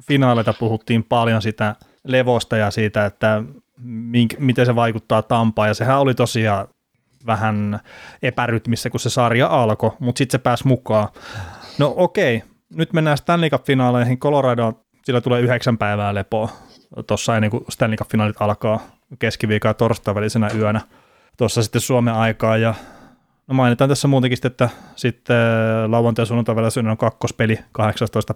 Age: 30-49